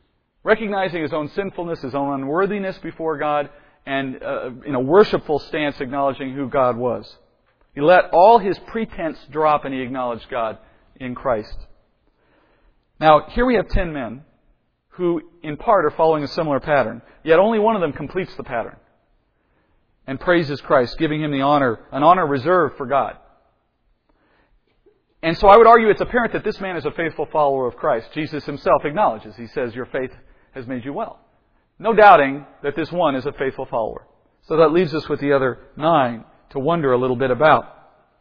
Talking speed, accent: 180 wpm, American